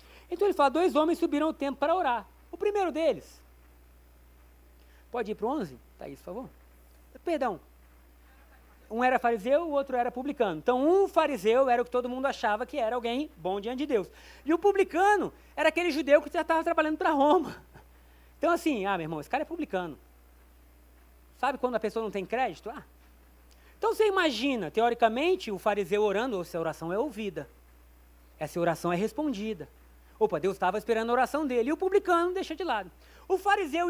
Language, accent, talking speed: Portuguese, Brazilian, 190 wpm